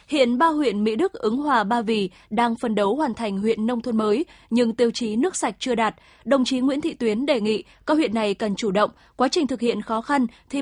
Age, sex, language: 20-39, female, Vietnamese